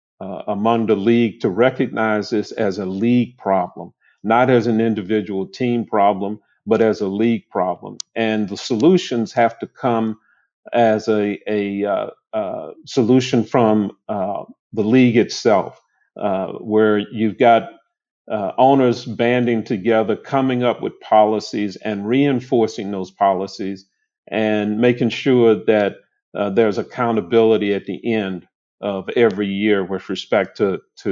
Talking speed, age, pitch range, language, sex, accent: 140 wpm, 50-69, 100-120 Hz, English, male, American